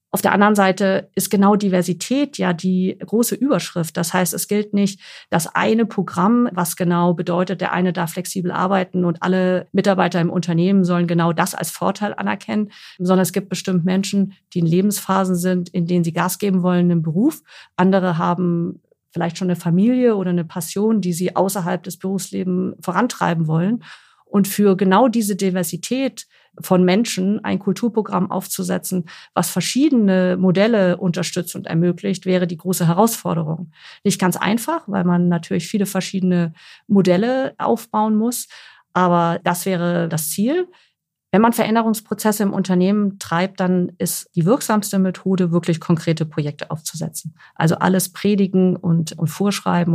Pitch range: 175-200 Hz